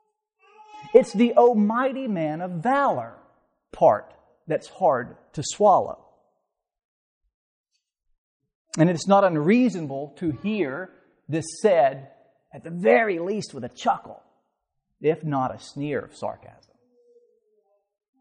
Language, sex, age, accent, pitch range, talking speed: English, male, 40-59, American, 150-245 Hz, 105 wpm